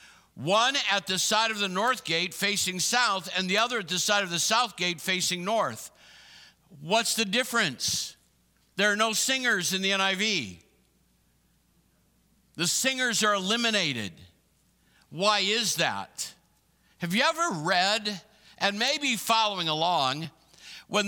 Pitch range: 170-225 Hz